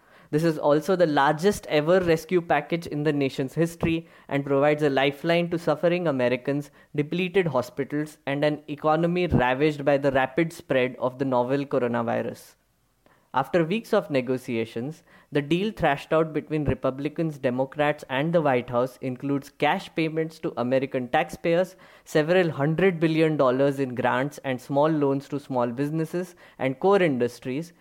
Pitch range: 135-170 Hz